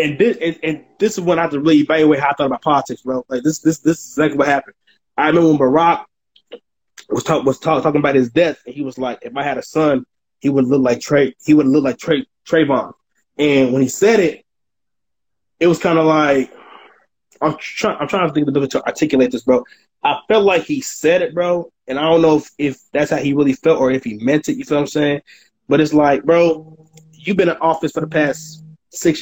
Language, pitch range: English, 145-200 Hz